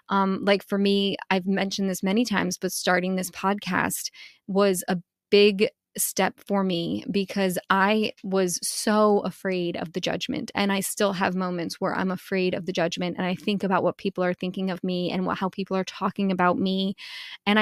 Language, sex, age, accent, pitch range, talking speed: English, female, 20-39, American, 190-210 Hz, 190 wpm